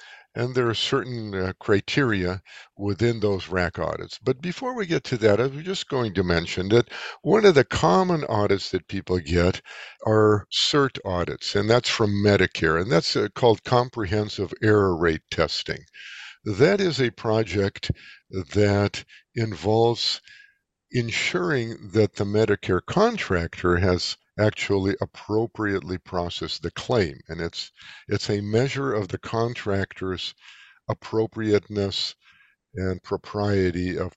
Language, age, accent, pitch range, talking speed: English, 50-69, American, 90-120 Hz, 130 wpm